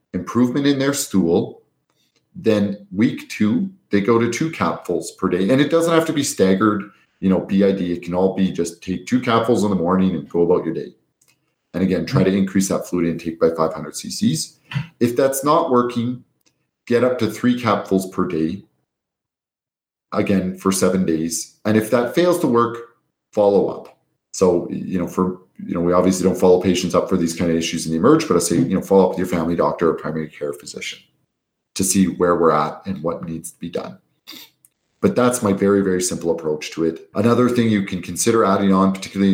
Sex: male